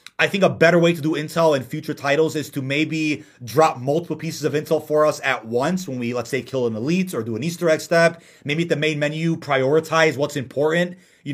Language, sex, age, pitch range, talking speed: English, male, 30-49, 135-180 Hz, 240 wpm